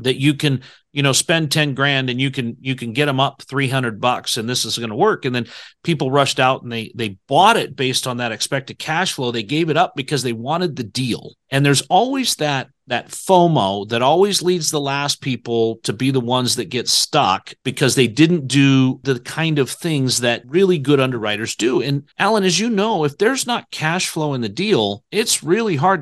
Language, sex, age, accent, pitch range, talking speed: English, male, 40-59, American, 130-170 Hz, 225 wpm